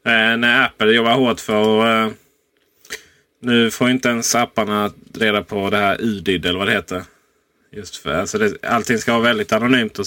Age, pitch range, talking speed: 30-49, 100-125 Hz, 180 wpm